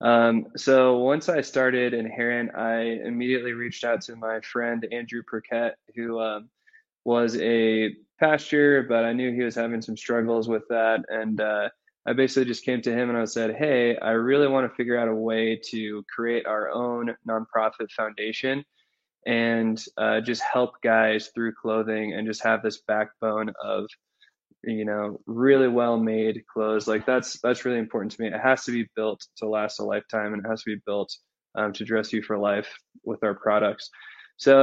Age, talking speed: 20-39, 185 wpm